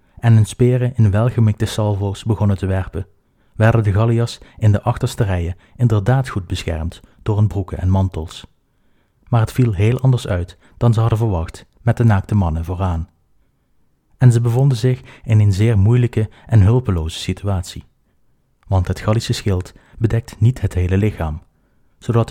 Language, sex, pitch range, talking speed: Dutch, male, 95-115 Hz, 160 wpm